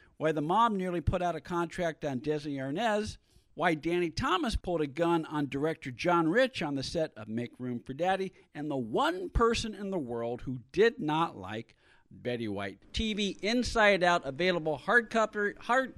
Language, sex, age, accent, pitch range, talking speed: English, male, 50-69, American, 140-190 Hz, 185 wpm